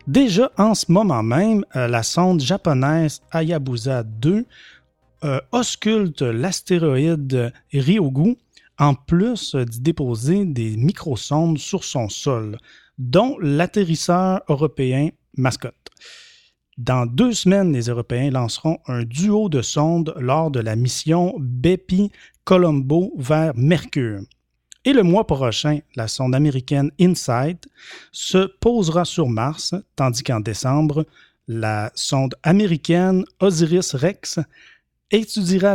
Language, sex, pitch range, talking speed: French, male, 130-180 Hz, 105 wpm